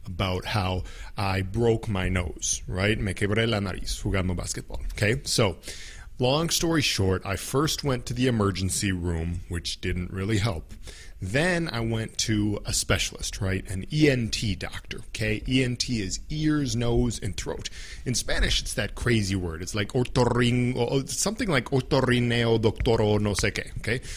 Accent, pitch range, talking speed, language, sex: American, 95-125 Hz, 155 wpm, English, male